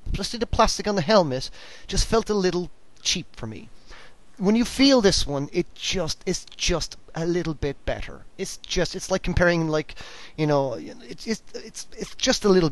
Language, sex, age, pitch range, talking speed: English, male, 30-49, 125-185 Hz, 185 wpm